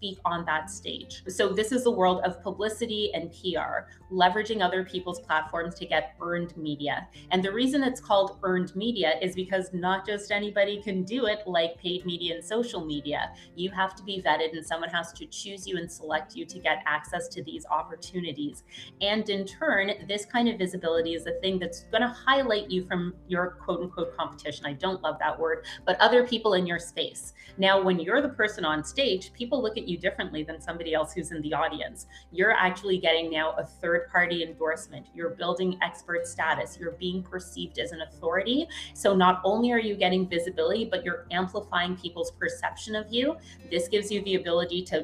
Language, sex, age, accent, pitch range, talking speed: English, female, 30-49, American, 170-210 Hz, 200 wpm